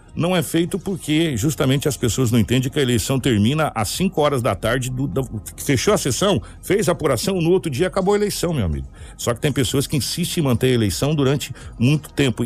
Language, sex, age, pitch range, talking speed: Portuguese, male, 60-79, 110-150 Hz, 225 wpm